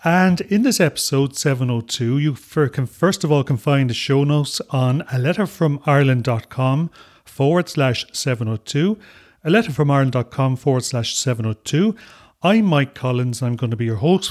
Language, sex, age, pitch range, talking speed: English, male, 40-59, 125-160 Hz, 150 wpm